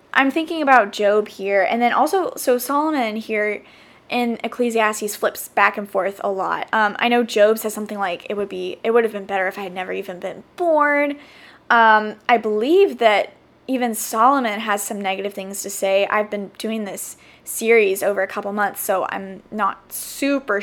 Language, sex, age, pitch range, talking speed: English, female, 10-29, 205-245 Hz, 190 wpm